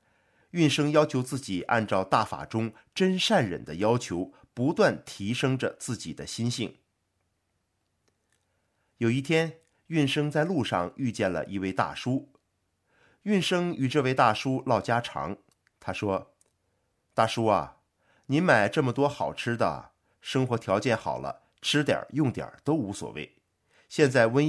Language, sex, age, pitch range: Chinese, male, 50-69, 100-140 Hz